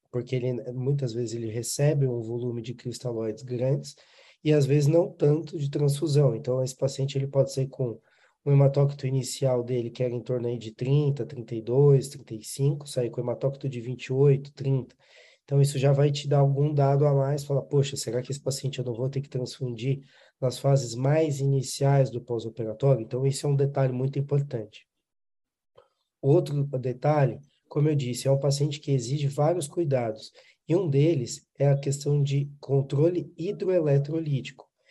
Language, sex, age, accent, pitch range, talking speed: Portuguese, male, 20-39, Brazilian, 125-145 Hz, 175 wpm